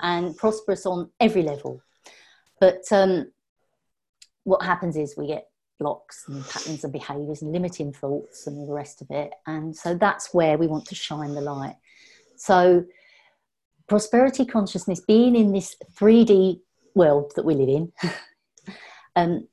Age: 40-59